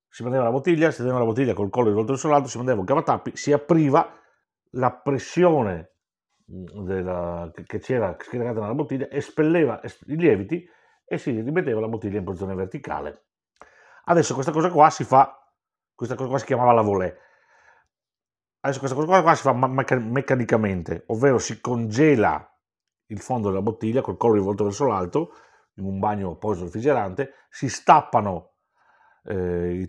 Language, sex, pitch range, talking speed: Italian, male, 95-140 Hz, 160 wpm